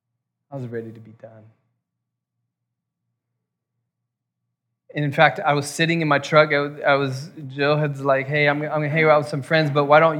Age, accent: 20-39, American